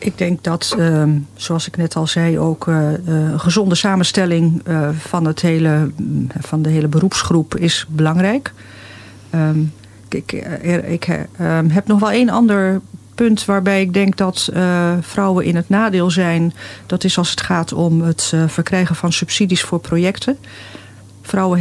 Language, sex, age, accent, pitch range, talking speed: Dutch, female, 40-59, Dutch, 160-185 Hz, 135 wpm